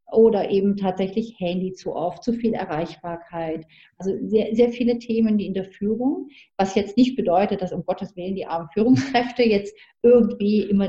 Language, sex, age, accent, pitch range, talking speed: German, female, 40-59, German, 175-220 Hz, 175 wpm